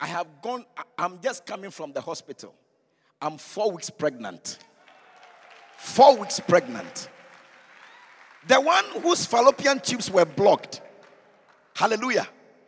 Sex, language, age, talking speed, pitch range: male, English, 50-69, 115 wpm, 175-290 Hz